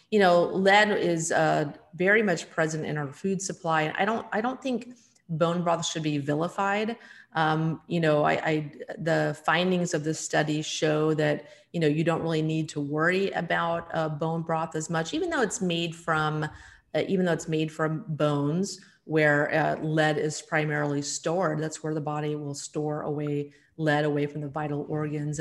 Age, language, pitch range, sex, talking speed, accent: 30-49, English, 155-185 Hz, female, 190 wpm, American